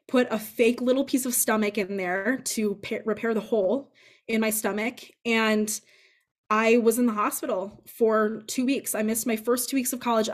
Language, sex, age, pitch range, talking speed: English, female, 20-39, 205-235 Hz, 190 wpm